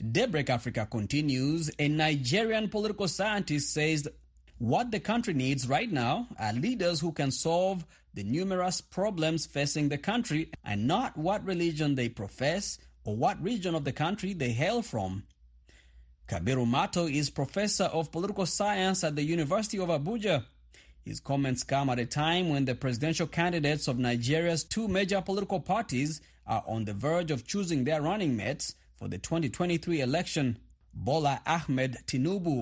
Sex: male